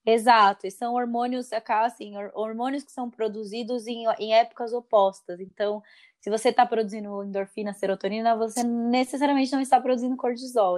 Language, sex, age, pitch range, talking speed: Portuguese, female, 20-39, 205-240 Hz, 140 wpm